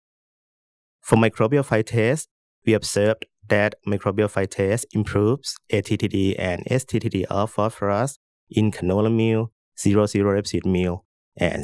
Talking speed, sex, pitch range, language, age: 110 wpm, male, 95-110 Hz, English, 20-39